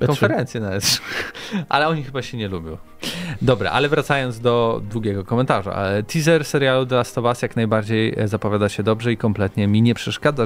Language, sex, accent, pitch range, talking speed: Polish, male, native, 105-135 Hz, 150 wpm